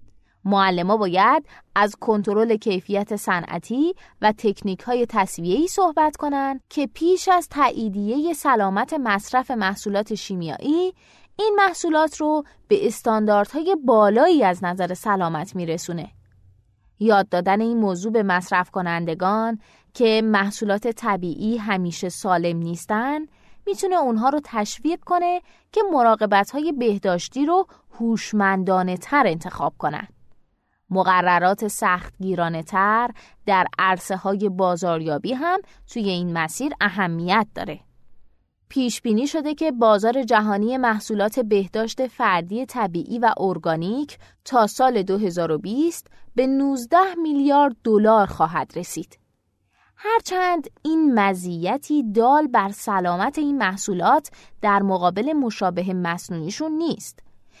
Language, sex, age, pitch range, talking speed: Persian, female, 20-39, 185-275 Hz, 105 wpm